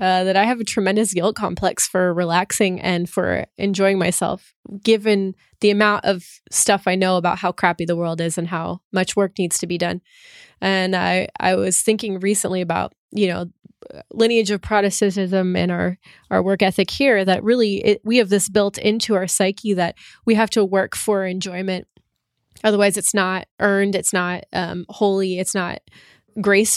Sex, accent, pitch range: female, American, 185-210 Hz